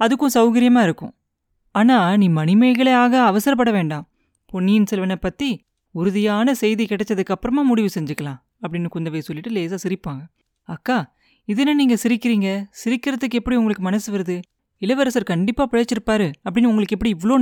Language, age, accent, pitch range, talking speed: Tamil, 30-49, native, 175-230 Hz, 135 wpm